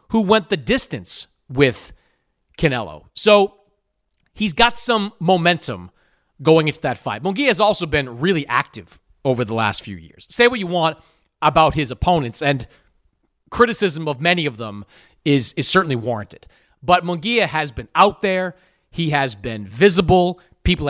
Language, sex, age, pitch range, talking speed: English, male, 30-49, 135-205 Hz, 155 wpm